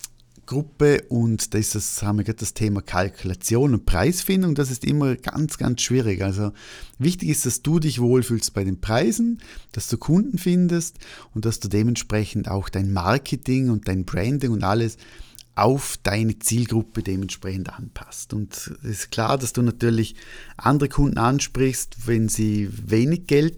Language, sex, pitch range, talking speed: German, male, 105-130 Hz, 160 wpm